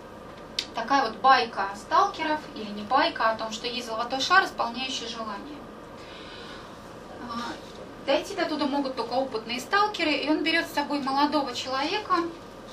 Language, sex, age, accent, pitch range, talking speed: Russian, female, 20-39, native, 235-295 Hz, 135 wpm